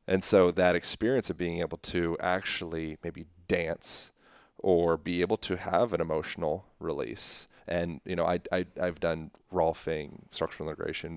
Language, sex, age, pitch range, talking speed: English, male, 30-49, 80-95 Hz, 155 wpm